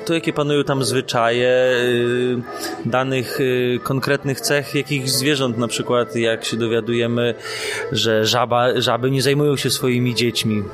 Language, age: Polish, 20-39